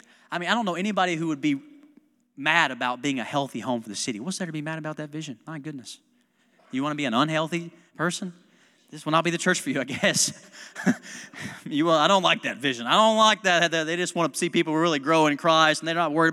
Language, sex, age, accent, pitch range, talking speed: English, male, 30-49, American, 140-220 Hz, 255 wpm